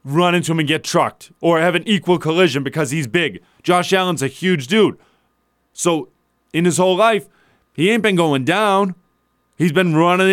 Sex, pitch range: male, 150-185 Hz